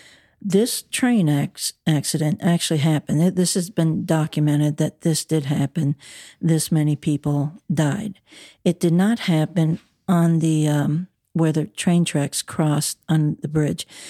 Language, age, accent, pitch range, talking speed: English, 60-79, American, 155-175 Hz, 135 wpm